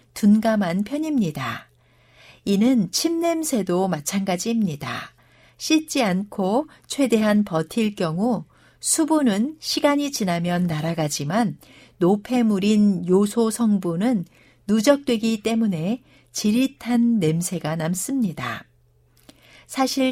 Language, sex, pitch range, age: Korean, female, 180-255 Hz, 60-79